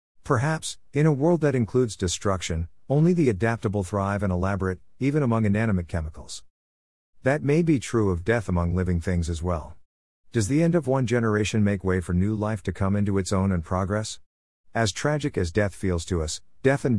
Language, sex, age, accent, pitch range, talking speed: English, male, 50-69, American, 85-115 Hz, 195 wpm